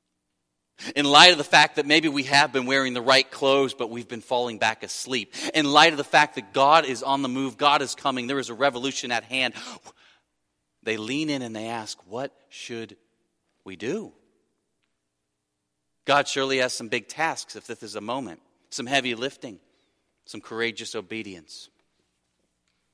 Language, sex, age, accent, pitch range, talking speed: English, male, 30-49, American, 100-125 Hz, 175 wpm